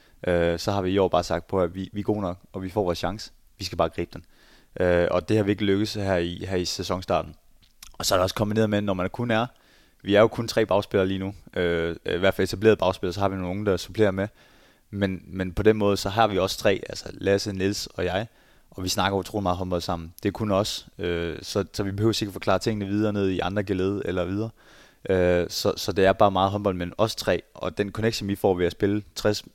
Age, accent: 20-39, native